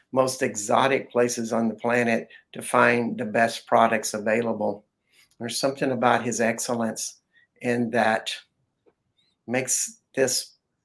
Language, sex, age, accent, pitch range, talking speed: English, male, 60-79, American, 115-130 Hz, 115 wpm